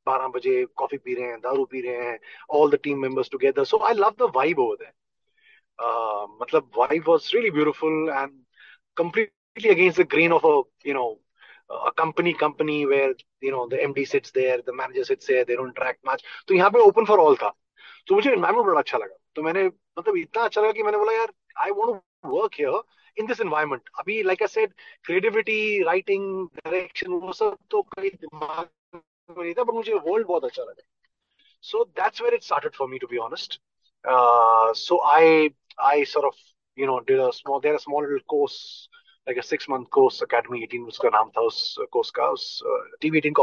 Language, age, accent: Hindi, 30-49, native